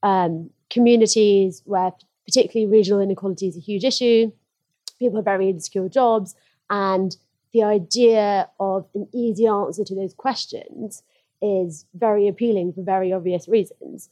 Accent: British